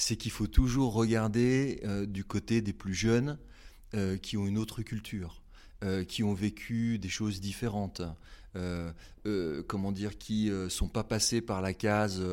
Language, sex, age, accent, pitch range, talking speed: French, male, 30-49, French, 100-130 Hz, 180 wpm